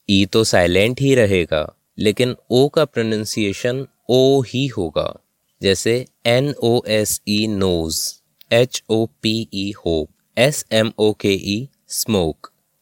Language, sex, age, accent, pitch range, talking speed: English, male, 20-39, Indian, 95-125 Hz, 90 wpm